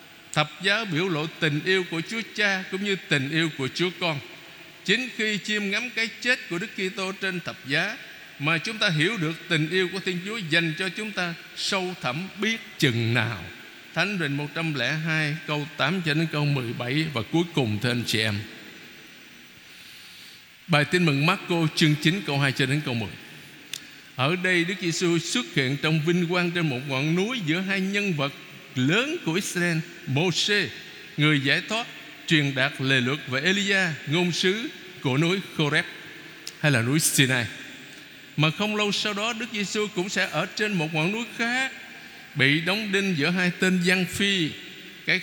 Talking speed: 185 wpm